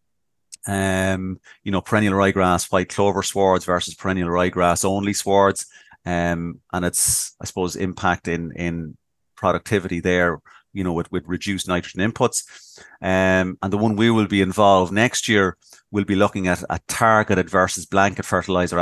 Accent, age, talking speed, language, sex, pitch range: Irish, 30-49, 155 wpm, English, male, 90-100 Hz